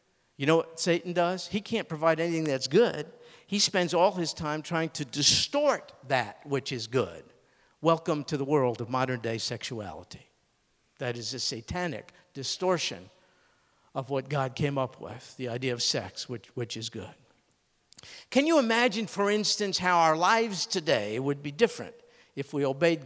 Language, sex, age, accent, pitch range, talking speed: English, male, 50-69, American, 135-190 Hz, 165 wpm